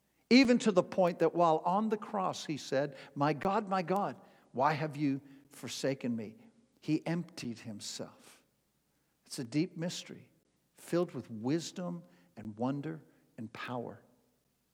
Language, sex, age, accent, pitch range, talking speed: English, male, 60-79, American, 155-235 Hz, 140 wpm